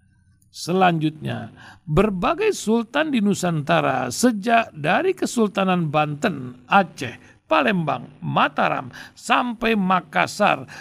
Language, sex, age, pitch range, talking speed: Indonesian, male, 50-69, 150-225 Hz, 80 wpm